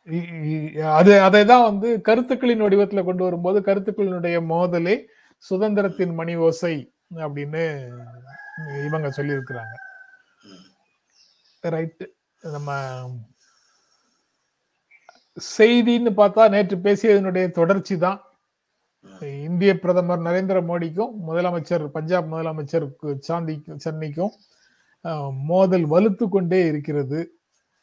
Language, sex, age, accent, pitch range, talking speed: Tamil, male, 30-49, native, 165-195 Hz, 75 wpm